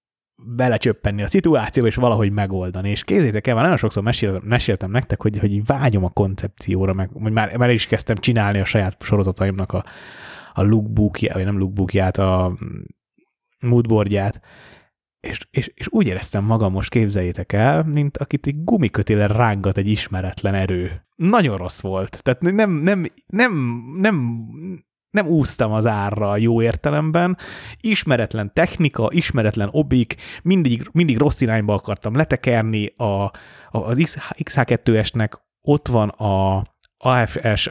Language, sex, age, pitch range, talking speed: Hungarian, male, 30-49, 100-130 Hz, 135 wpm